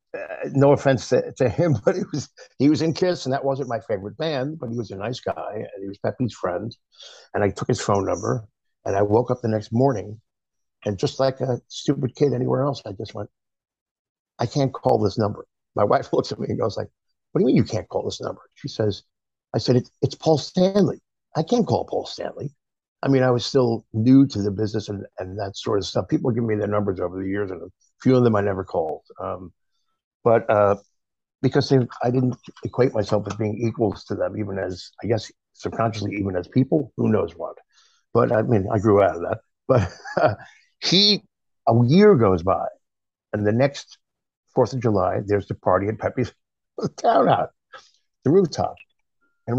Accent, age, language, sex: American, 50-69, English, male